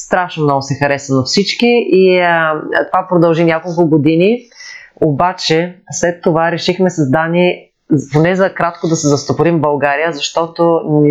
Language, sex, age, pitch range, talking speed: Bulgarian, female, 30-49, 150-180 Hz, 145 wpm